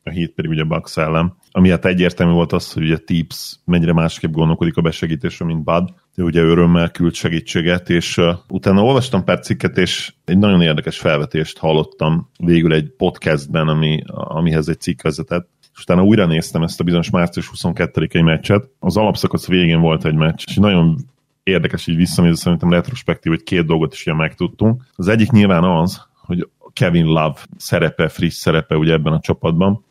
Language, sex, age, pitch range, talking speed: Hungarian, male, 30-49, 80-95 Hz, 175 wpm